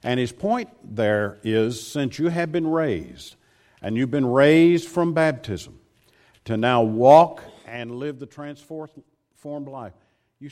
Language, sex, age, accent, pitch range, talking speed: English, male, 50-69, American, 110-165 Hz, 145 wpm